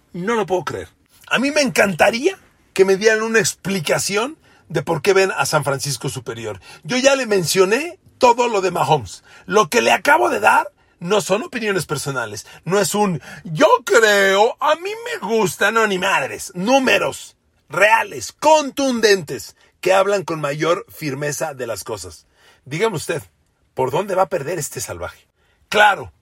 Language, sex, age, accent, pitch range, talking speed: Spanish, male, 40-59, Mexican, 150-230 Hz, 165 wpm